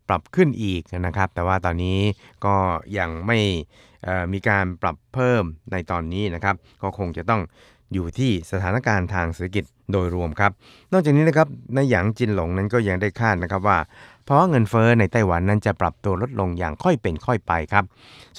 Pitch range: 90-120 Hz